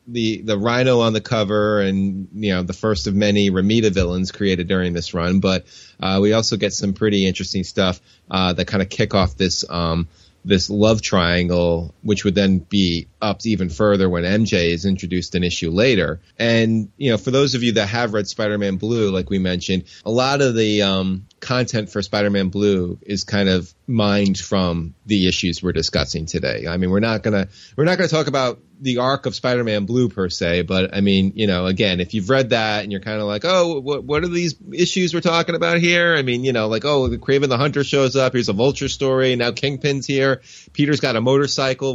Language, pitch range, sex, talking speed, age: English, 95-130 Hz, male, 215 wpm, 30-49